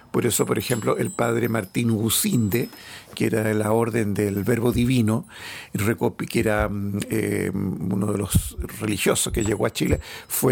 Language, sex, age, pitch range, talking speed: Spanish, male, 50-69, 105-120 Hz, 160 wpm